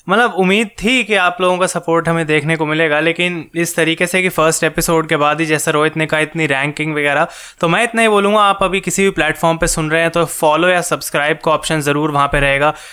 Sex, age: male, 20-39